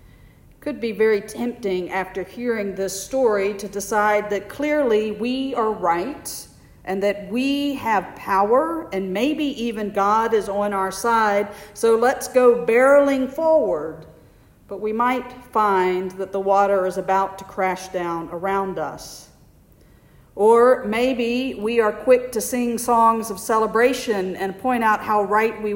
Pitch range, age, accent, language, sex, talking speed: 195-245 Hz, 50-69, American, English, female, 150 wpm